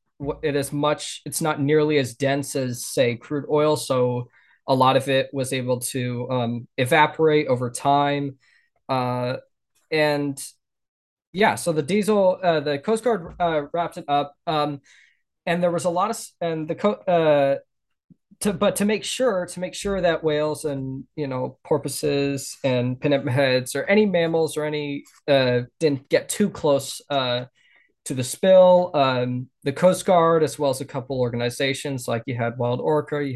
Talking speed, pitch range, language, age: 170 wpm, 130-155 Hz, English, 20-39